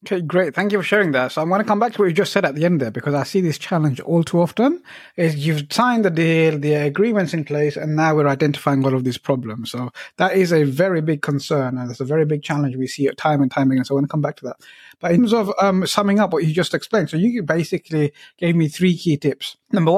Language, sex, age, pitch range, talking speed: English, male, 30-49, 145-195 Hz, 285 wpm